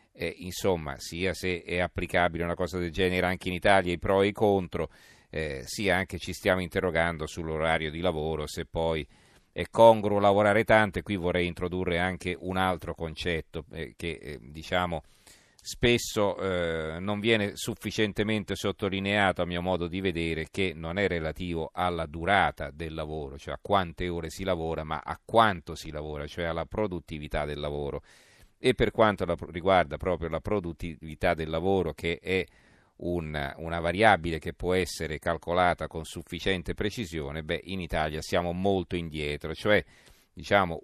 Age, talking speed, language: 40-59, 160 wpm, Italian